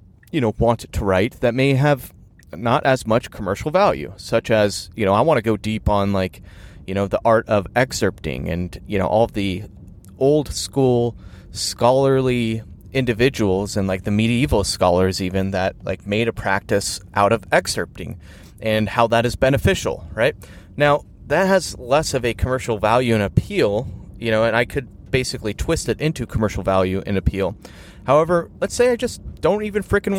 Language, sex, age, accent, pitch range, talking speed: English, male, 30-49, American, 95-125 Hz, 180 wpm